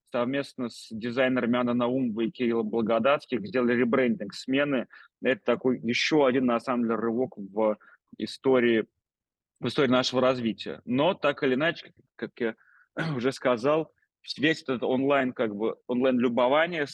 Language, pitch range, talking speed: Russian, 115-135 Hz, 140 wpm